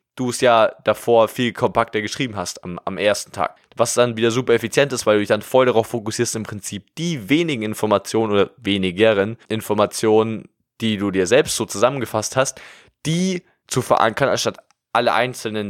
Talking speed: 175 wpm